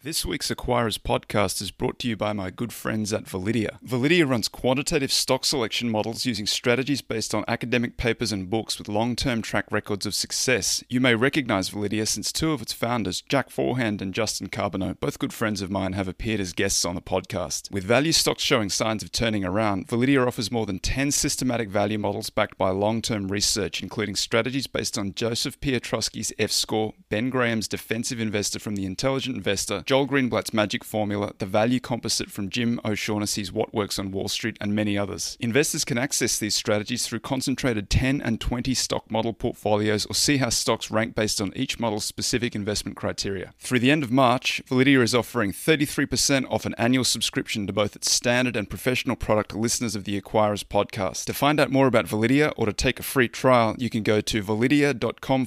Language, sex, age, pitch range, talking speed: English, male, 30-49, 105-125 Hz, 195 wpm